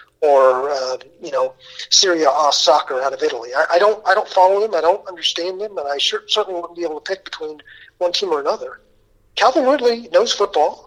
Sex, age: male, 40-59